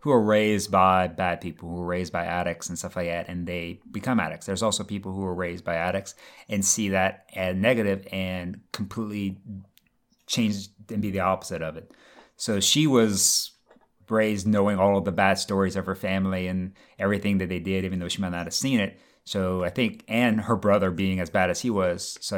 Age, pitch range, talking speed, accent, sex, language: 30-49, 95-105 Hz, 215 wpm, American, male, English